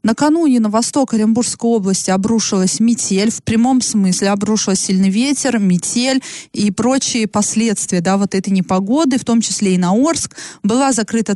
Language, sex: Russian, female